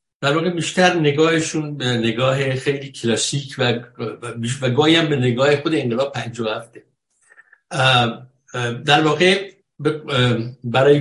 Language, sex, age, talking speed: Persian, male, 60-79, 105 wpm